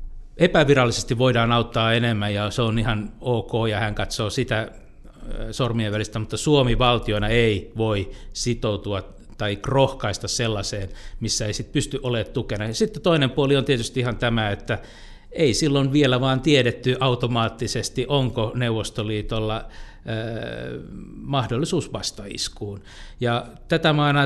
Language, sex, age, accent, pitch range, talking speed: Finnish, male, 60-79, native, 110-145 Hz, 135 wpm